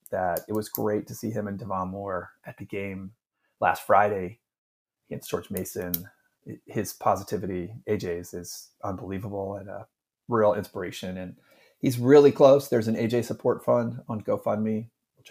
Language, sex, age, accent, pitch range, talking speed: English, male, 30-49, American, 95-125 Hz, 155 wpm